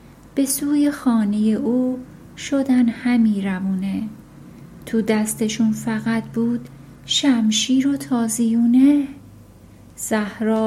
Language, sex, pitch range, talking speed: Persian, female, 225-260 Hz, 85 wpm